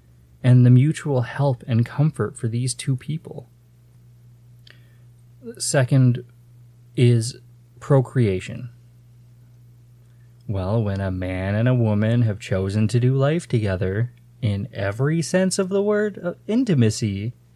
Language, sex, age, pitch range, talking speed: English, male, 20-39, 115-130 Hz, 115 wpm